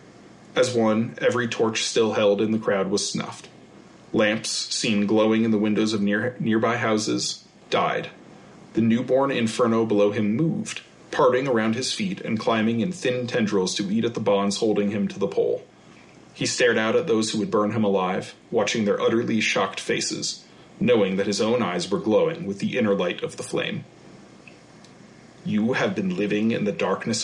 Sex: male